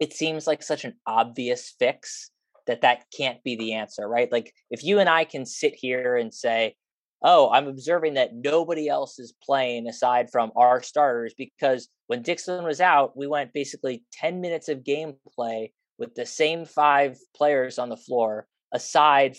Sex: male